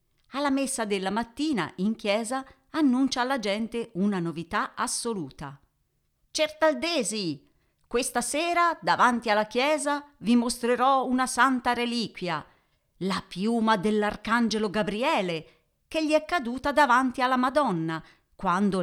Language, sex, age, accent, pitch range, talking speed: Italian, female, 40-59, native, 175-255 Hz, 110 wpm